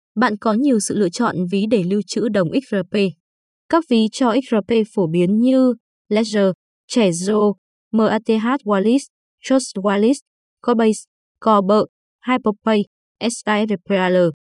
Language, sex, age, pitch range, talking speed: Vietnamese, female, 20-39, 195-250 Hz, 120 wpm